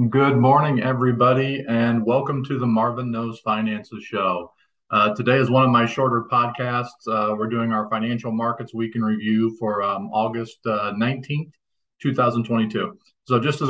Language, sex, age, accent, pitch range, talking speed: English, male, 40-59, American, 110-135 Hz, 160 wpm